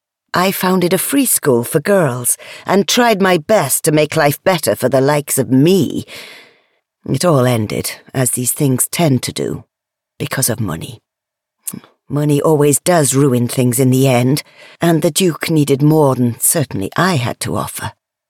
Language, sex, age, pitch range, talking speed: English, female, 50-69, 135-195 Hz, 165 wpm